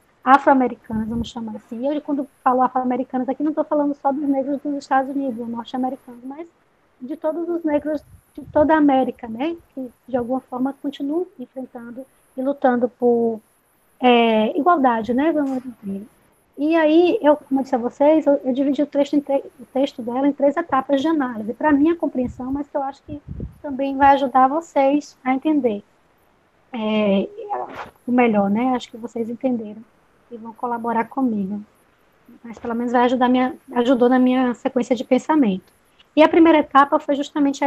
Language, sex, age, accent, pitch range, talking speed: Portuguese, female, 20-39, Brazilian, 245-295 Hz, 180 wpm